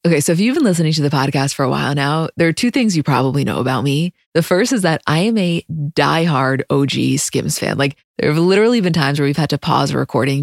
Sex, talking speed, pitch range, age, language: female, 265 wpm, 145-190 Hz, 20-39, English